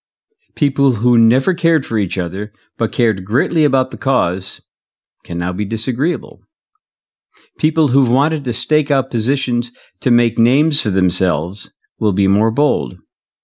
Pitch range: 105-140 Hz